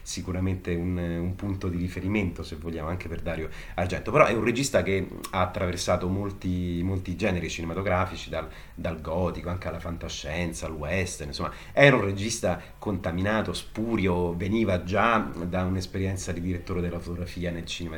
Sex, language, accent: male, Italian, native